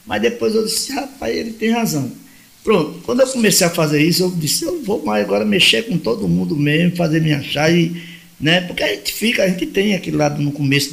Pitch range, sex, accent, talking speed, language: 145-190 Hz, male, Brazilian, 230 wpm, Portuguese